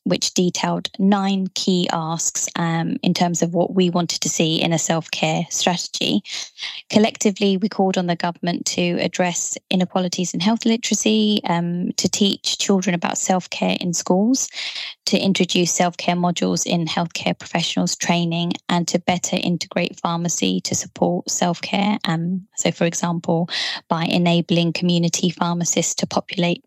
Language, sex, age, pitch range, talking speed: German, female, 20-39, 170-195 Hz, 140 wpm